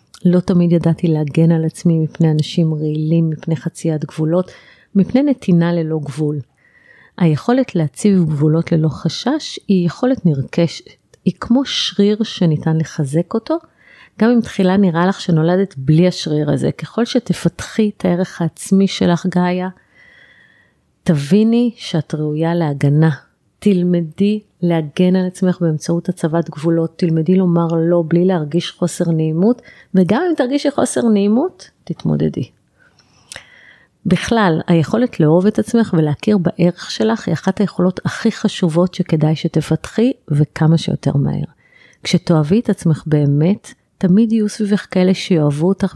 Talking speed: 130 wpm